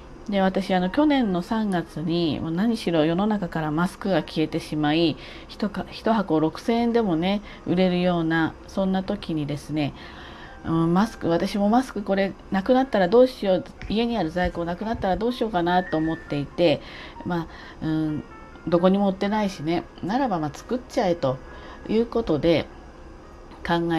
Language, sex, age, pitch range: Japanese, female, 40-59, 155-205 Hz